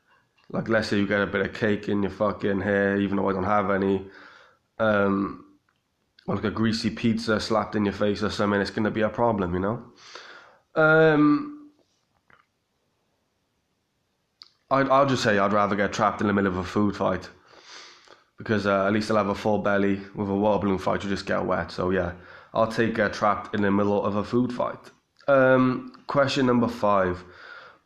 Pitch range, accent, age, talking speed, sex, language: 100-125 Hz, British, 20-39, 195 wpm, male, English